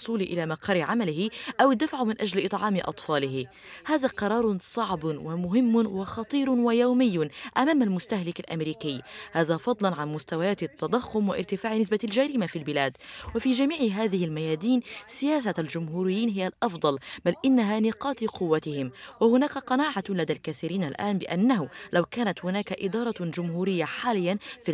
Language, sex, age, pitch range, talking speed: Arabic, female, 20-39, 165-230 Hz, 130 wpm